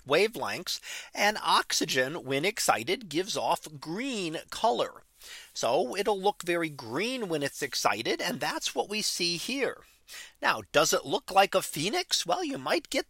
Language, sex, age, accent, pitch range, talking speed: English, male, 40-59, American, 140-210 Hz, 155 wpm